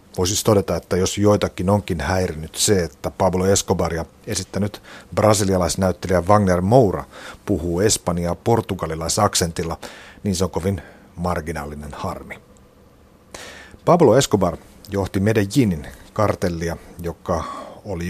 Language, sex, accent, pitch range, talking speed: Finnish, male, native, 85-100 Hz, 105 wpm